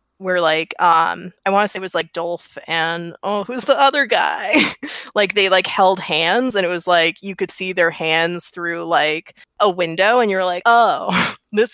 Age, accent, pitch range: 20-39, American, 170-210 Hz